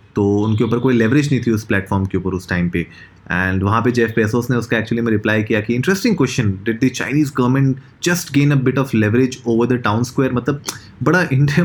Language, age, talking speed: Hindi, 20-39, 235 wpm